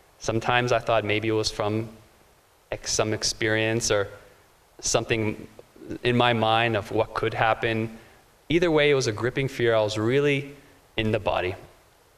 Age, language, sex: 20-39, English, male